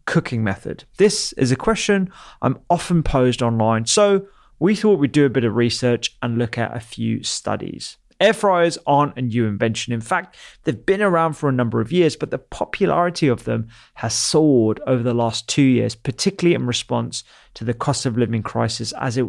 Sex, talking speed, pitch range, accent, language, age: male, 200 wpm, 115-150 Hz, British, English, 30-49